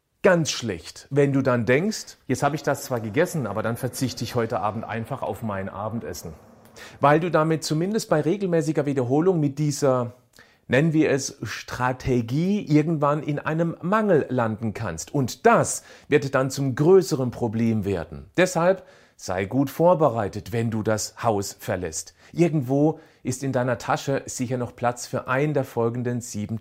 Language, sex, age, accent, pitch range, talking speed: German, male, 40-59, German, 115-155 Hz, 160 wpm